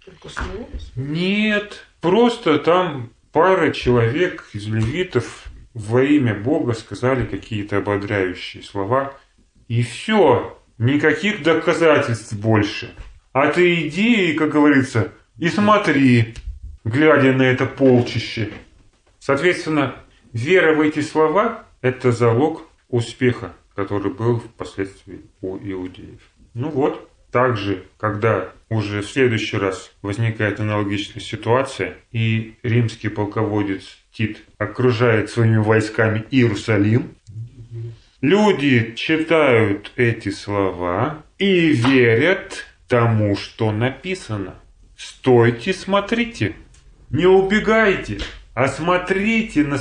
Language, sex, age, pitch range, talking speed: Russian, male, 30-49, 105-150 Hz, 95 wpm